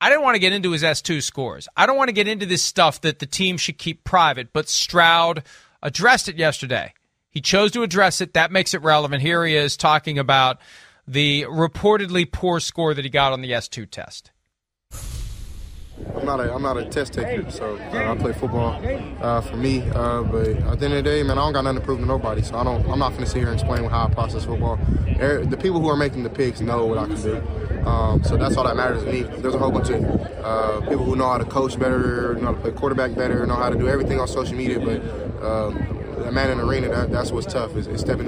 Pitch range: 110-140 Hz